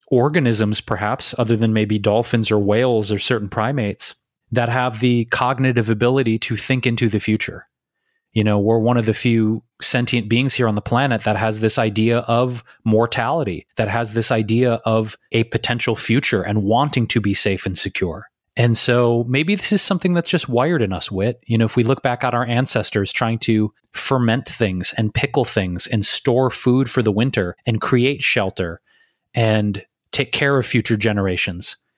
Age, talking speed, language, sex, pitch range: 30-49, 185 wpm, English, male, 110-125 Hz